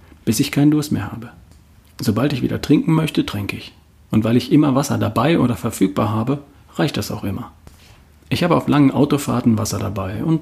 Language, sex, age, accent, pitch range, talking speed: German, male, 40-59, German, 100-140 Hz, 195 wpm